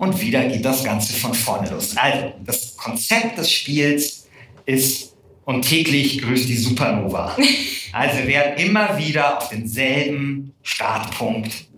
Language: German